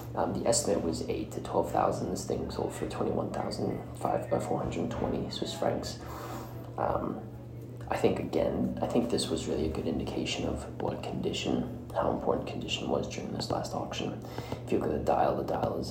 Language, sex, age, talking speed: English, male, 20-39, 185 wpm